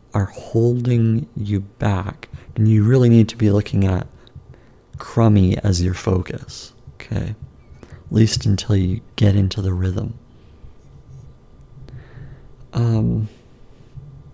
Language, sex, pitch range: English, male, 100-125 Hz